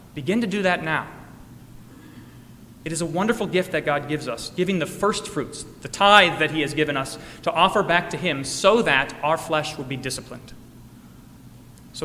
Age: 30-49